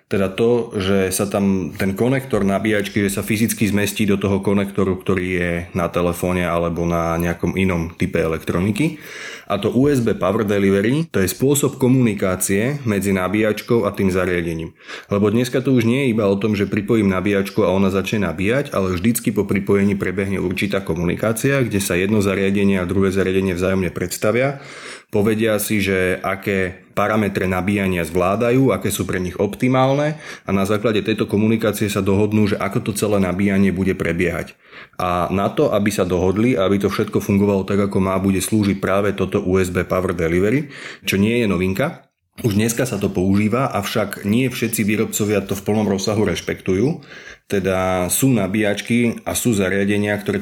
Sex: male